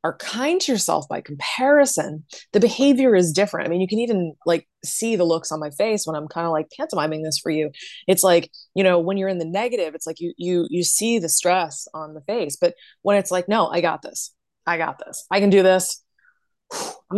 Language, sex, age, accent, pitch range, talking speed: English, female, 20-39, American, 160-200 Hz, 235 wpm